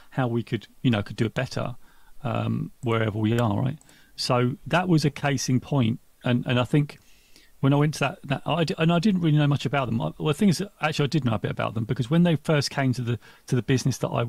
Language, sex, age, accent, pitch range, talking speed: English, male, 40-59, British, 120-145 Hz, 275 wpm